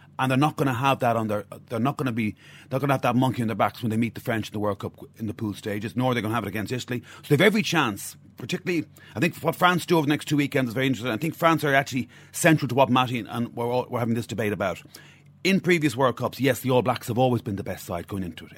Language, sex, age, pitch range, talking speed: English, male, 30-49, 110-140 Hz, 315 wpm